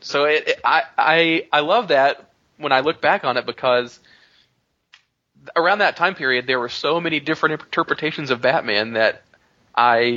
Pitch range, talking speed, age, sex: 110-130 Hz, 170 wpm, 20-39, male